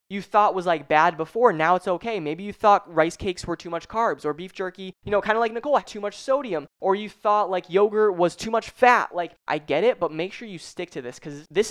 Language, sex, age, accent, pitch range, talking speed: English, male, 20-39, American, 170-230 Hz, 260 wpm